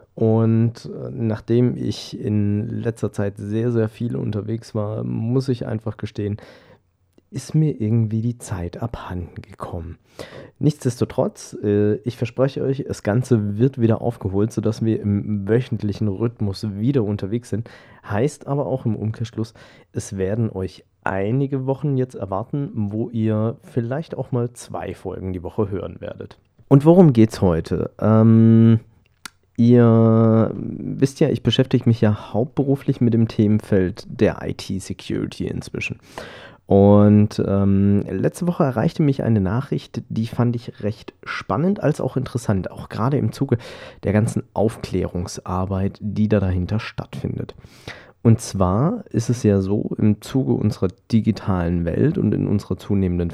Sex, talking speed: male, 140 wpm